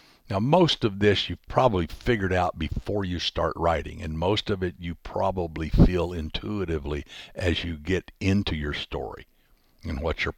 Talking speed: 170 wpm